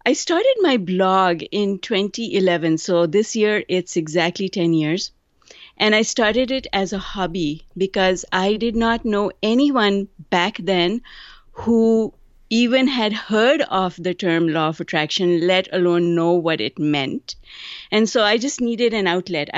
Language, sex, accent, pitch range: English, female, Indian, 190-255 Hz